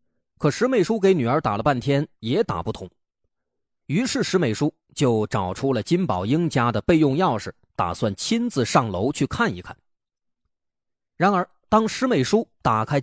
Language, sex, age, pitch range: Chinese, male, 30-49, 100-165 Hz